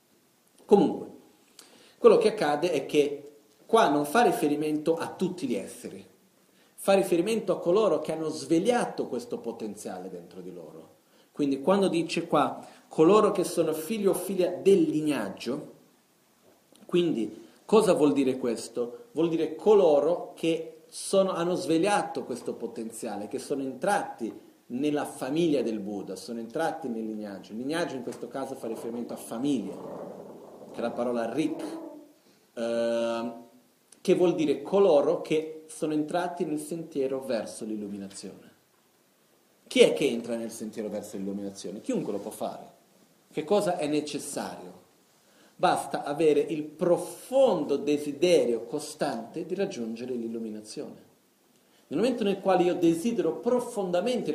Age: 40-59